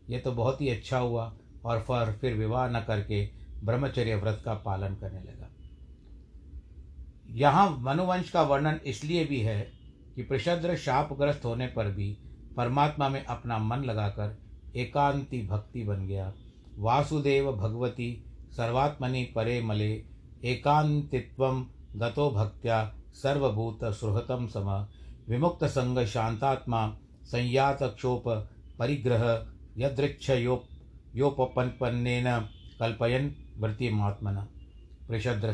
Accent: native